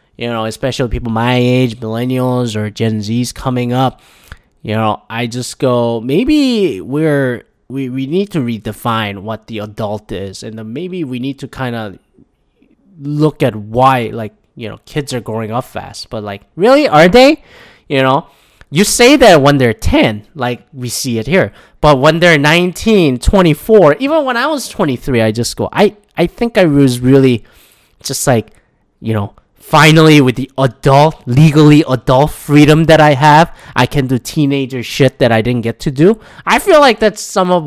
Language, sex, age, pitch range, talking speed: English, male, 20-39, 115-165 Hz, 185 wpm